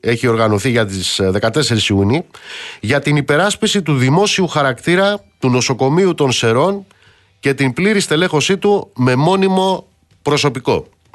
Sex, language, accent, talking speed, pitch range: male, Greek, native, 130 wpm, 115-175 Hz